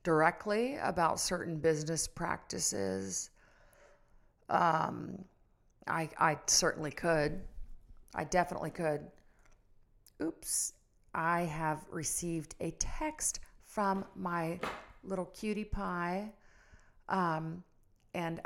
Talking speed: 85 wpm